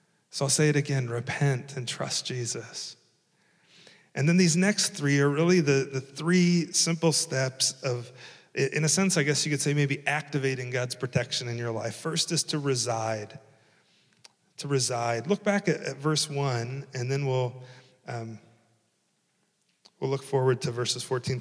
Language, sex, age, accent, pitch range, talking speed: English, male, 40-59, American, 125-160 Hz, 165 wpm